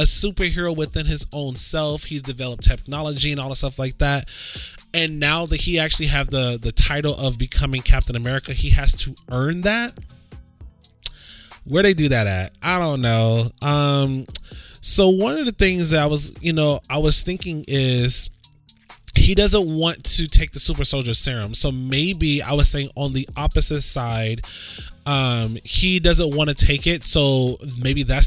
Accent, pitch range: American, 125-155 Hz